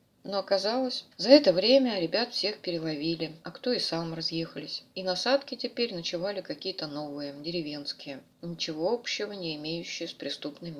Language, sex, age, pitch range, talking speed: Russian, female, 20-39, 170-225 Hz, 145 wpm